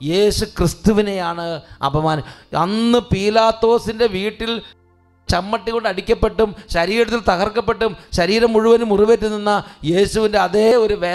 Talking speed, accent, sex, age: 85 wpm, Indian, male, 30-49